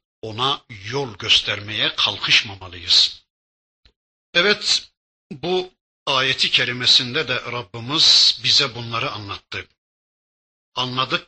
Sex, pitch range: male, 115-165 Hz